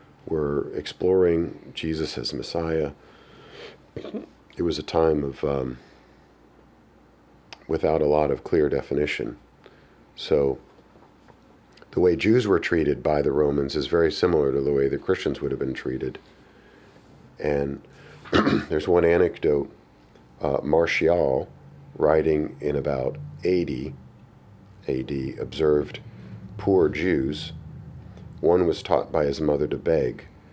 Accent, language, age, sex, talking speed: American, English, 50-69, male, 120 wpm